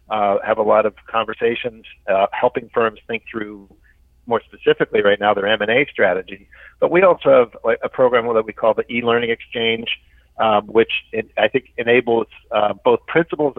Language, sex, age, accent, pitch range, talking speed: English, male, 40-59, American, 105-125 Hz, 170 wpm